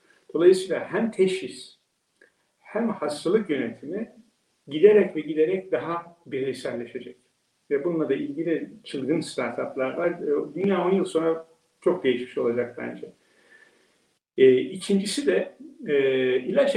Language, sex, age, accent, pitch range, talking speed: Turkish, male, 60-79, native, 150-220 Hz, 110 wpm